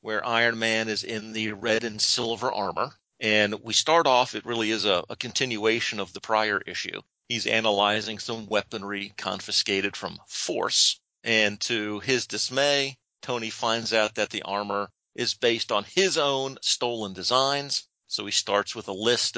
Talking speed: 165 wpm